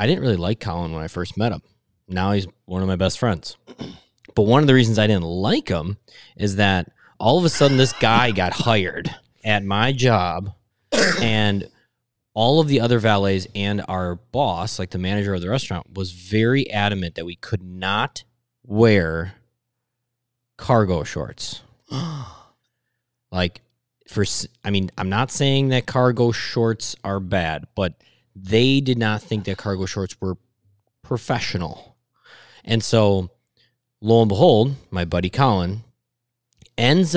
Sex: male